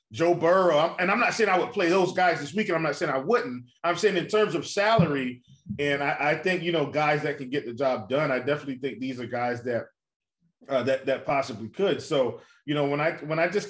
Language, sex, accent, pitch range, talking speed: English, male, American, 140-195 Hz, 250 wpm